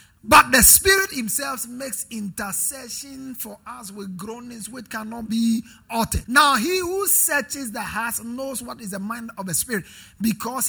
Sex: male